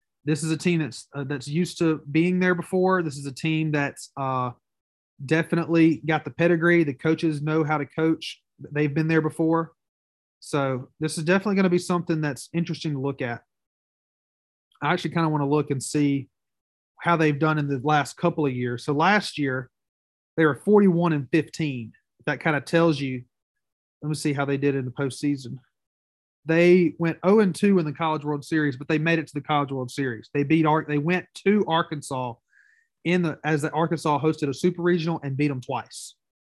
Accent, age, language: American, 30-49, English